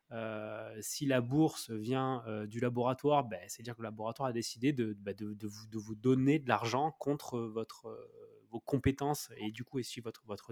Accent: French